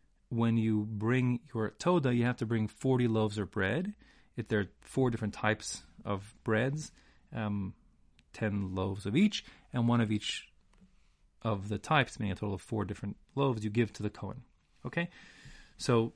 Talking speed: 175 wpm